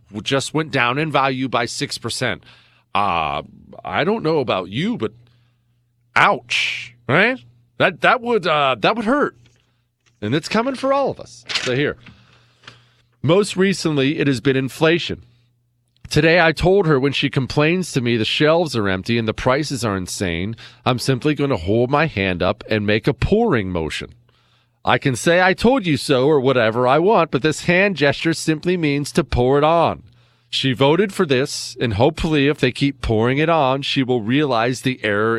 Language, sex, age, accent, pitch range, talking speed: English, male, 40-59, American, 120-160 Hz, 185 wpm